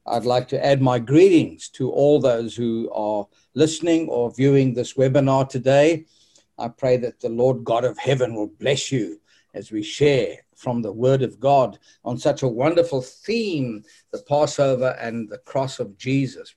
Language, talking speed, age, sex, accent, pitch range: English, 175 wpm, 60-79, male, South African, 120-150 Hz